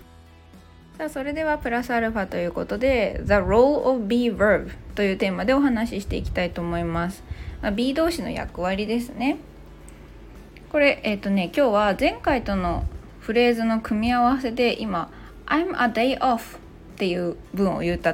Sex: female